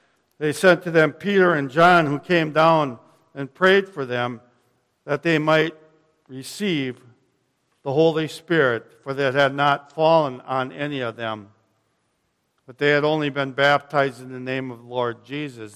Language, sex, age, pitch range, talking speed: English, male, 60-79, 125-160 Hz, 165 wpm